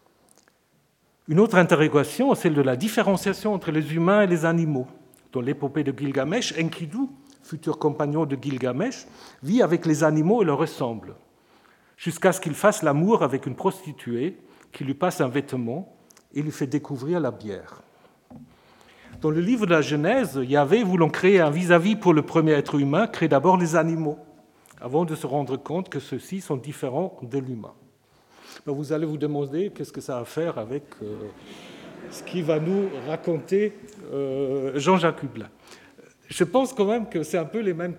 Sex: male